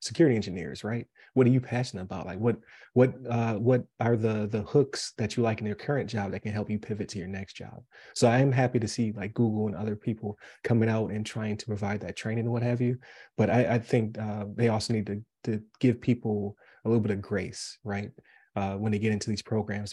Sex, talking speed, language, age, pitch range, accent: male, 245 wpm, English, 30-49, 105-120 Hz, American